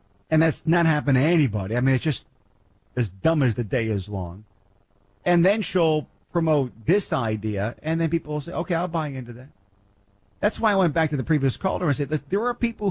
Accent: American